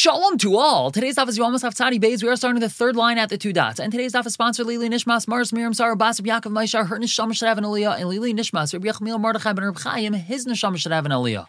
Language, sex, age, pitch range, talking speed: English, male, 20-39, 145-205 Hz, 255 wpm